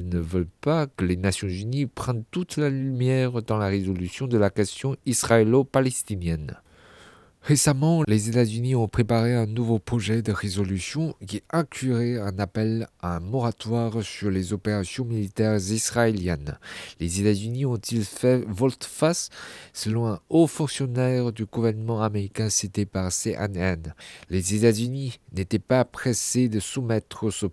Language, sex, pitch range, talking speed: French, male, 105-125 Hz, 135 wpm